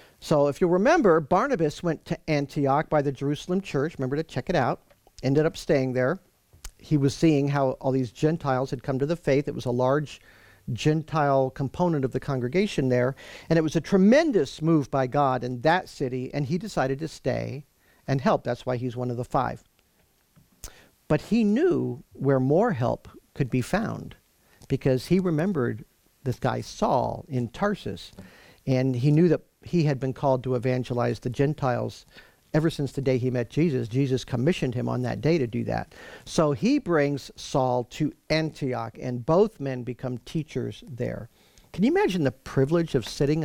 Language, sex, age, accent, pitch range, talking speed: English, male, 50-69, American, 130-160 Hz, 180 wpm